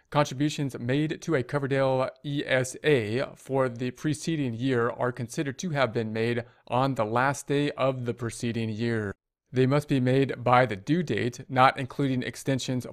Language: English